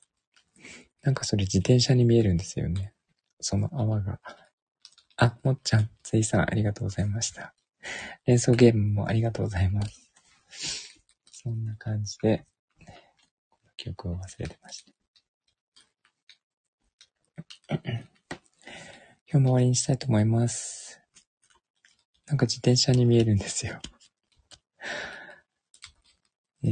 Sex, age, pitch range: male, 20-39, 105-125 Hz